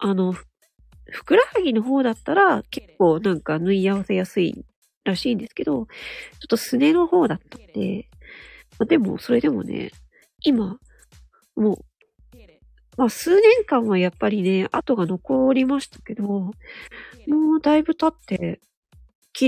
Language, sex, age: Japanese, female, 40-59